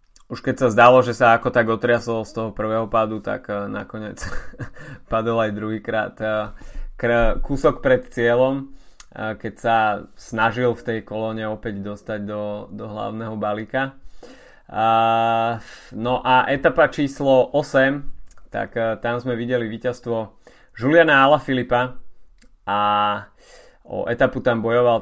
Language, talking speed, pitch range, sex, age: Slovak, 125 wpm, 110-125 Hz, male, 20-39